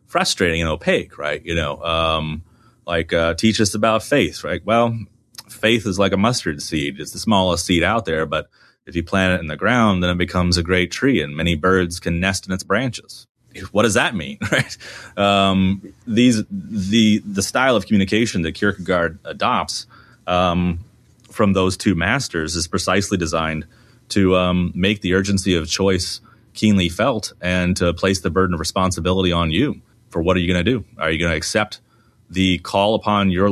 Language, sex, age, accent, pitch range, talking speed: English, male, 30-49, American, 90-105 Hz, 190 wpm